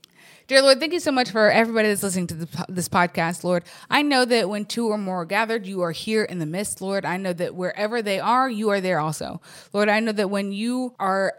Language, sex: English, female